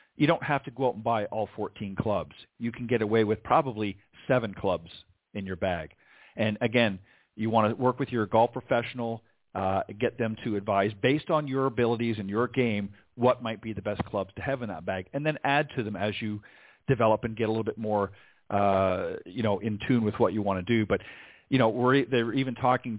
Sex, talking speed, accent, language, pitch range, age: male, 225 wpm, American, English, 105-130 Hz, 40-59